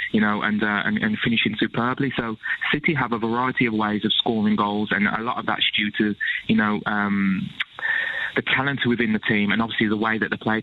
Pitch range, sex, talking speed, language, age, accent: 105-120 Hz, male, 225 wpm, English, 20-39, British